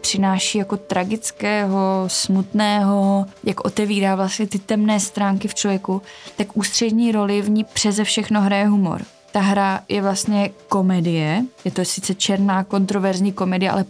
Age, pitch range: 20-39, 185-205 Hz